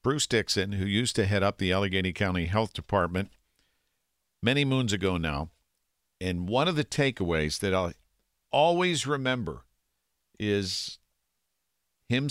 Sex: male